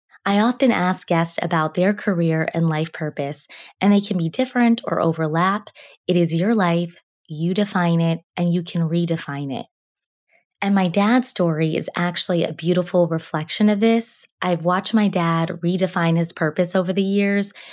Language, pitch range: English, 165-200 Hz